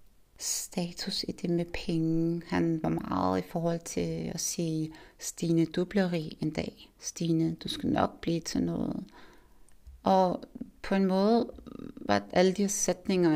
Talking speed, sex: 155 wpm, female